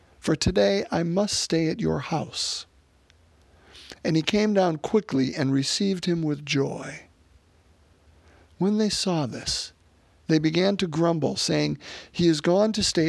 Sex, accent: male, American